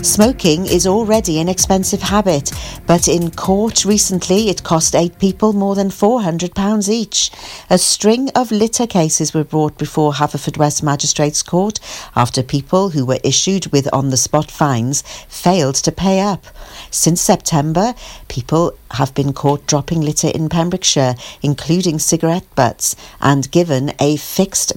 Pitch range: 140-190 Hz